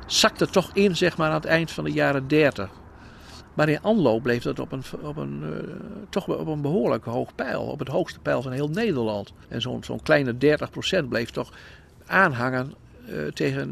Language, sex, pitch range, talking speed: Dutch, male, 120-150 Hz, 195 wpm